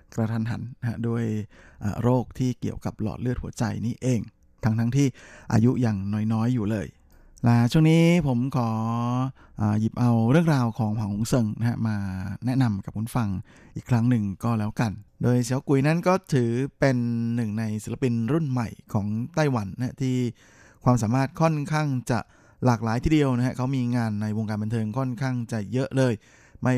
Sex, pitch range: male, 110-130 Hz